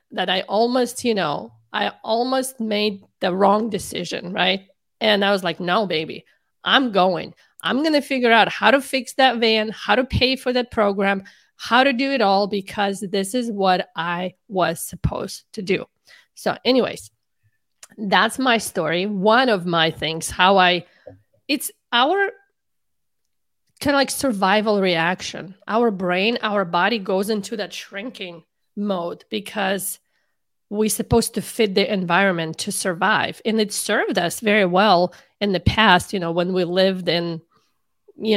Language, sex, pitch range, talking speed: English, female, 180-230 Hz, 160 wpm